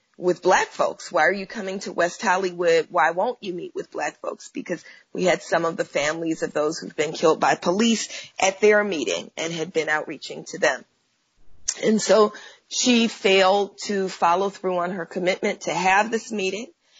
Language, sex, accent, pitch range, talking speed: English, female, American, 175-210 Hz, 190 wpm